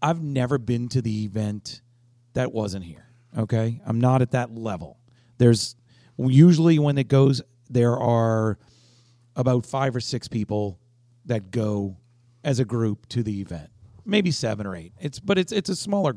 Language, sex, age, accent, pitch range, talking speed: English, male, 40-59, American, 110-130 Hz, 165 wpm